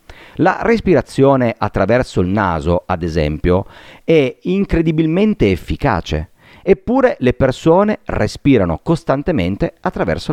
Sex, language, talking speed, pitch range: male, Italian, 95 wpm, 90-145 Hz